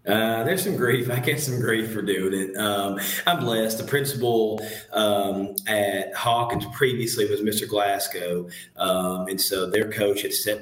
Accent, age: American, 30-49